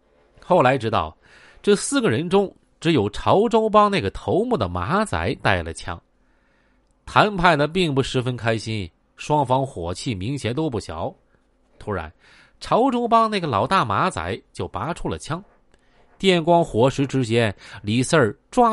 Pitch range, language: 115-190 Hz, Chinese